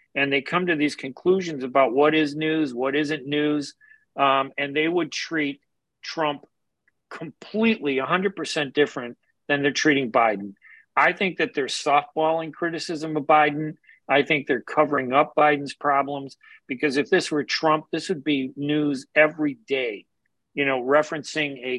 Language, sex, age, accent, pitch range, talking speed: English, male, 40-59, American, 140-170 Hz, 155 wpm